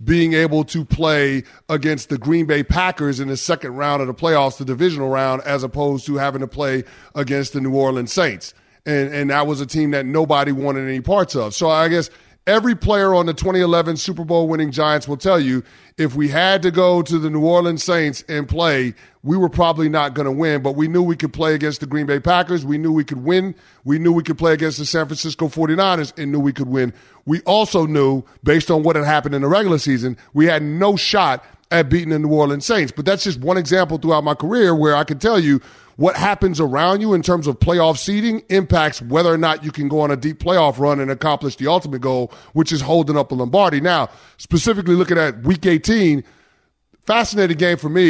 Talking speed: 230 wpm